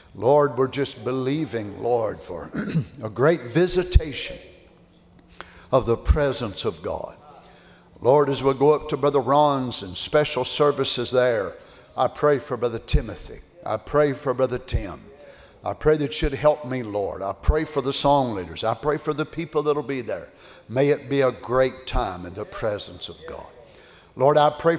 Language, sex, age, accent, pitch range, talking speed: English, male, 60-79, American, 130-165 Hz, 175 wpm